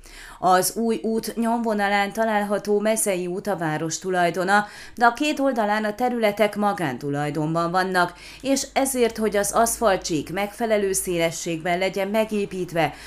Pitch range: 165-220 Hz